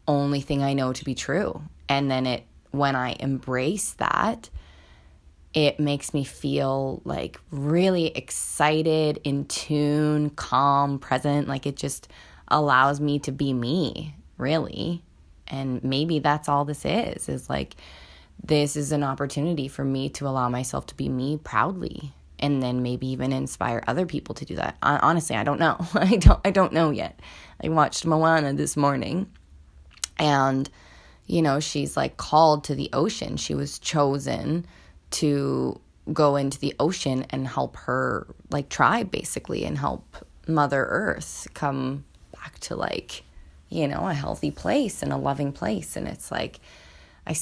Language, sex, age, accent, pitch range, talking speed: English, female, 20-39, American, 125-150 Hz, 155 wpm